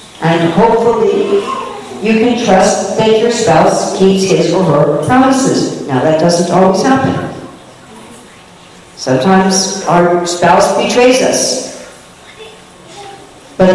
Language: English